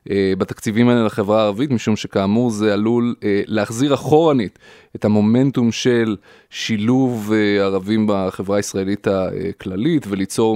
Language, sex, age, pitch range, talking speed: Hebrew, male, 20-39, 105-135 Hz, 110 wpm